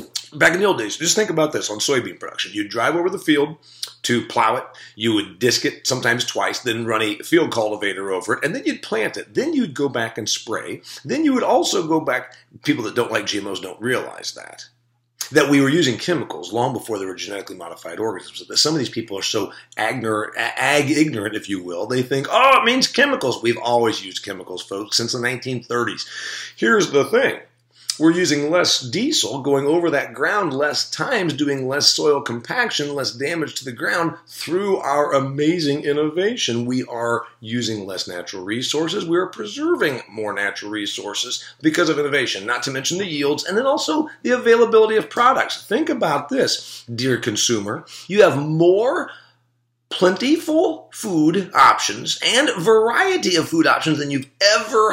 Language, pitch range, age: English, 120-195 Hz, 40-59